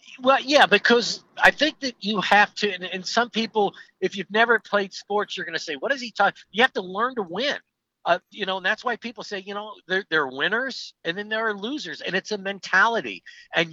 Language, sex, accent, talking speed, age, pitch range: English, male, American, 245 wpm, 50-69, 190-240 Hz